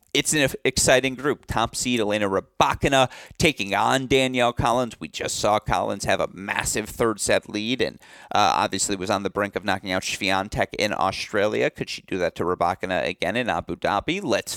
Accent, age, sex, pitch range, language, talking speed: American, 30-49, male, 100-125 Hz, English, 190 wpm